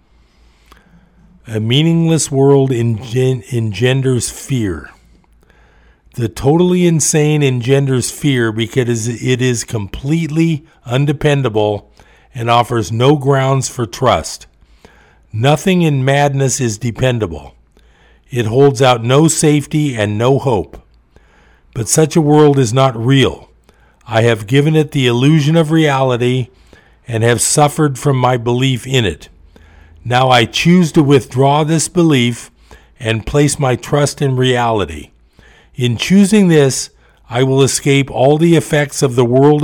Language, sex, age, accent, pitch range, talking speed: English, male, 50-69, American, 105-140 Hz, 125 wpm